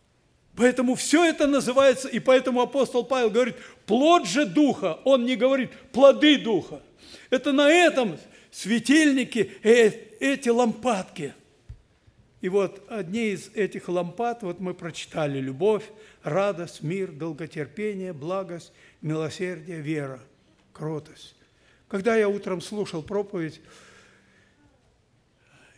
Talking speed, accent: 105 wpm, native